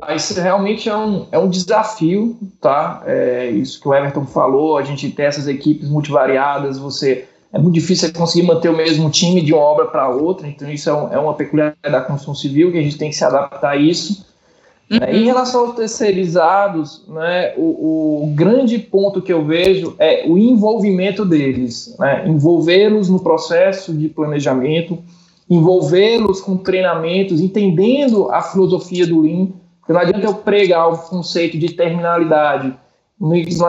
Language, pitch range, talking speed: Portuguese, 160-195 Hz, 170 wpm